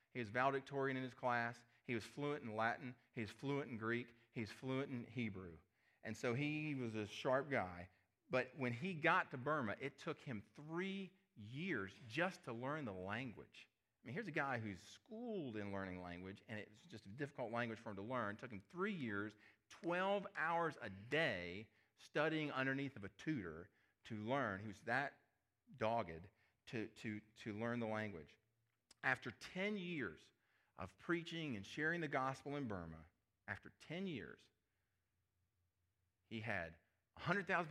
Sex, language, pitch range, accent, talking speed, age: male, English, 100-135 Hz, American, 165 wpm, 40-59